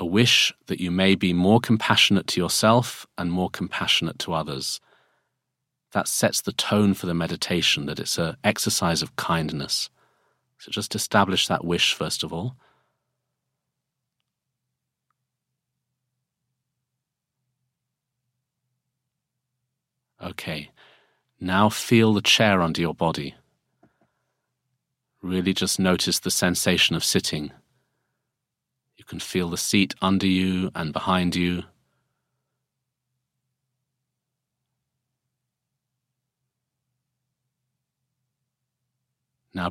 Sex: male